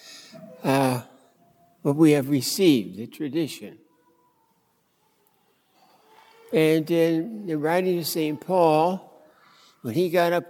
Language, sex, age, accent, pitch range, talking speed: English, male, 60-79, American, 145-175 Hz, 105 wpm